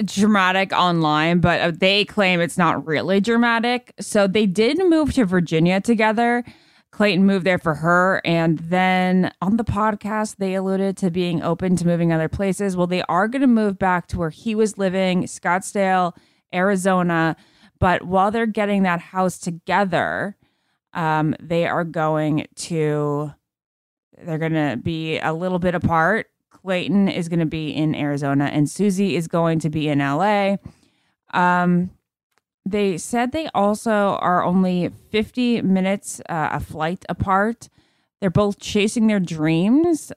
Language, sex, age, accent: English, female, 20-39, American